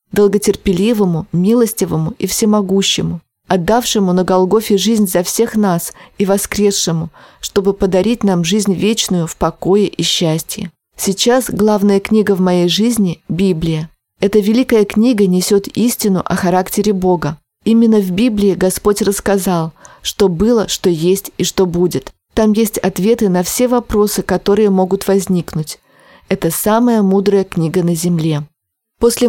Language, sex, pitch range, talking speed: Russian, female, 180-220 Hz, 135 wpm